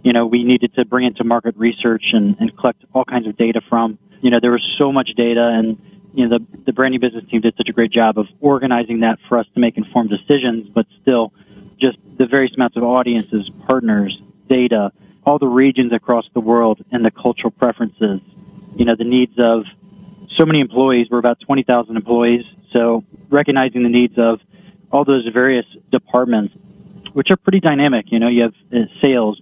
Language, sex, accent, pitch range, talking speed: English, male, American, 115-140 Hz, 195 wpm